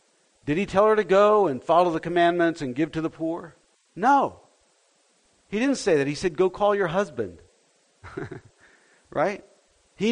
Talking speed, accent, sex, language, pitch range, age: 165 wpm, American, male, English, 200-260 Hz, 50-69